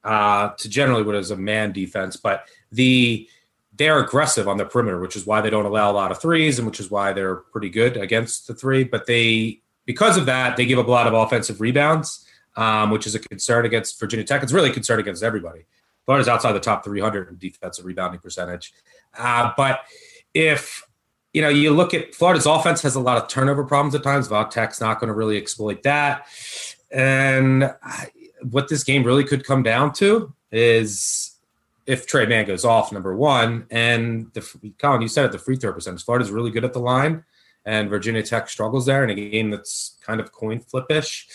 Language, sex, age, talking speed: English, male, 30-49, 210 wpm